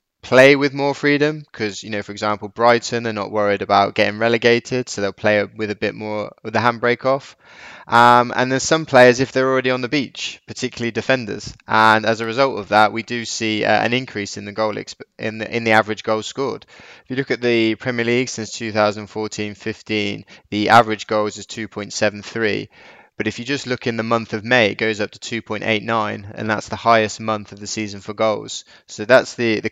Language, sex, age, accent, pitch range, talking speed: English, male, 20-39, British, 105-120 Hz, 215 wpm